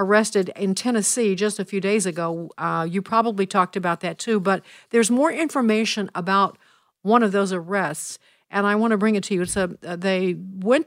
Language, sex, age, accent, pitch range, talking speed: English, female, 60-79, American, 185-215 Hz, 195 wpm